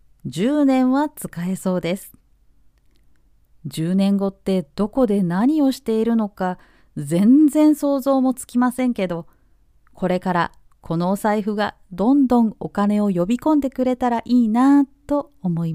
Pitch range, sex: 180-260 Hz, female